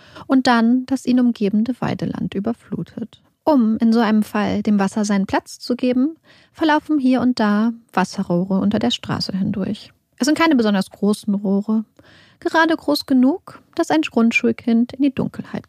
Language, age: German, 30-49